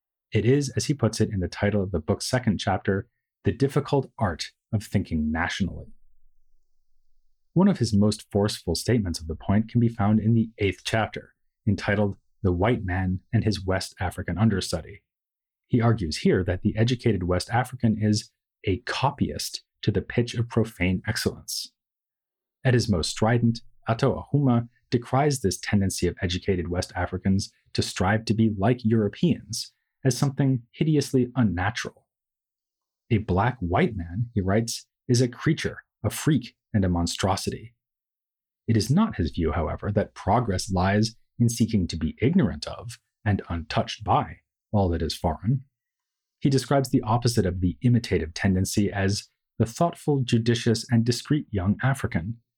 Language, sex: English, male